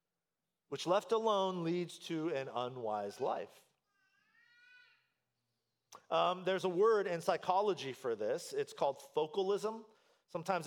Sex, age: male, 40-59